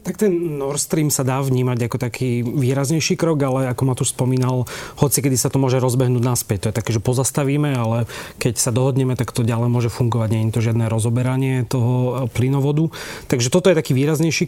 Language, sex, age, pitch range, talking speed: Slovak, male, 30-49, 120-140 Hz, 200 wpm